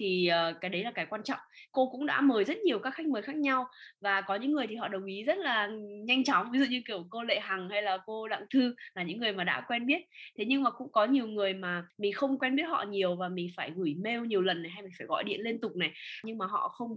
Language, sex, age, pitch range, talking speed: Vietnamese, female, 10-29, 185-260 Hz, 295 wpm